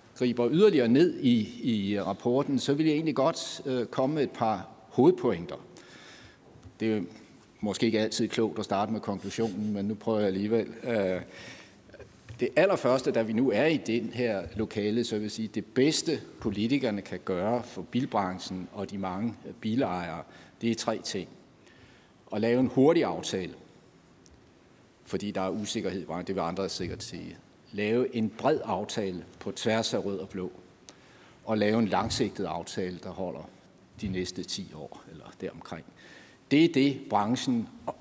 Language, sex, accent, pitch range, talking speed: Danish, male, native, 100-125 Hz, 165 wpm